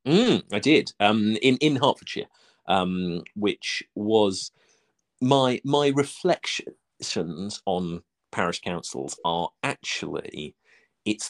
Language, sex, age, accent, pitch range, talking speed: English, male, 40-59, British, 100-125 Hz, 100 wpm